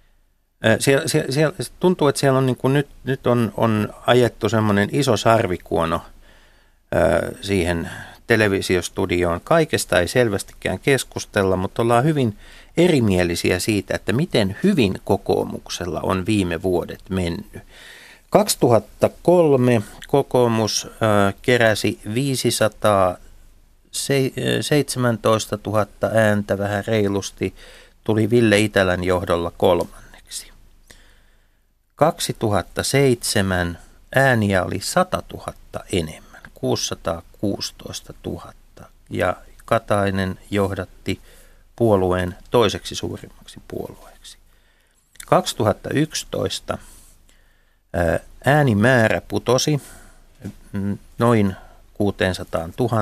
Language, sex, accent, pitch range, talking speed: Finnish, male, native, 90-120 Hz, 80 wpm